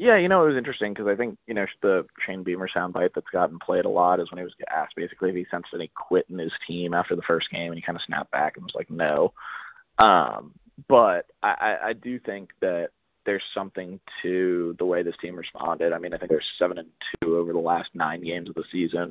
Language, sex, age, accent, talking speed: English, male, 20-39, American, 250 wpm